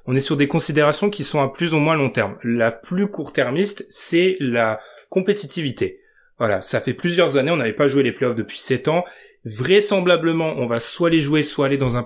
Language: French